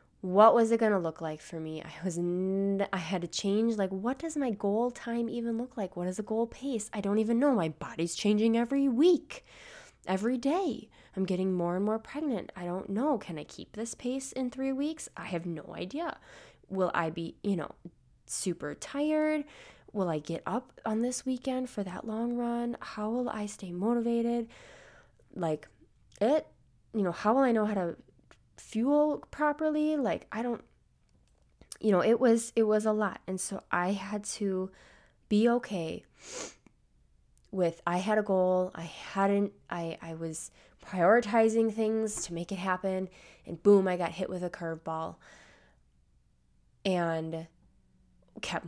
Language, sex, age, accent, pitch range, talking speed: English, female, 20-39, American, 170-230 Hz, 175 wpm